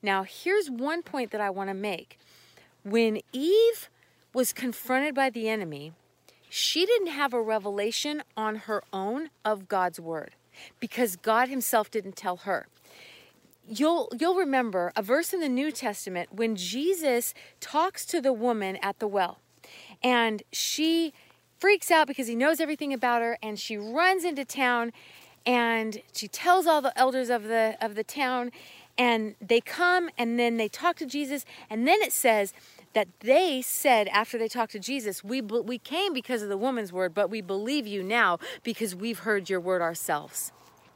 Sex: female